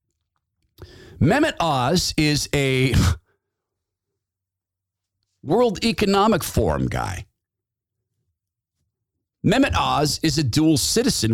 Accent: American